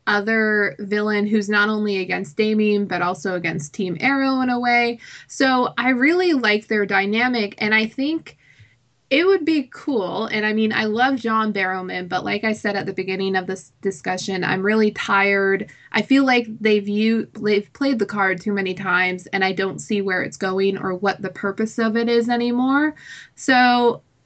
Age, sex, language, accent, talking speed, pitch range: 20-39, female, English, American, 190 wpm, 195-245 Hz